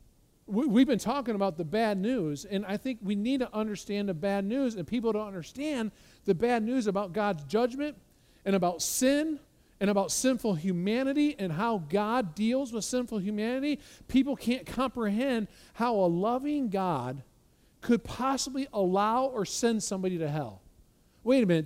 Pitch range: 180-240 Hz